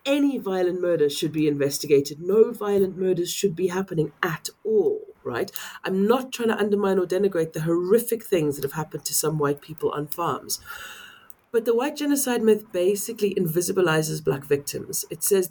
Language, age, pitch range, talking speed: English, 30-49, 165-240 Hz, 175 wpm